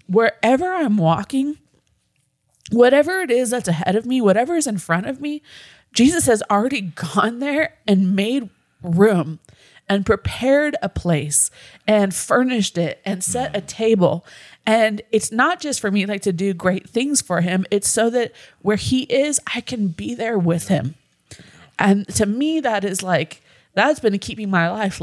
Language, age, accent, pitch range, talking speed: English, 20-39, American, 180-235 Hz, 170 wpm